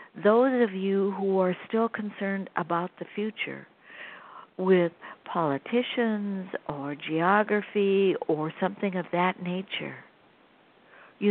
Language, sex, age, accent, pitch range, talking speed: English, female, 60-79, American, 180-220 Hz, 105 wpm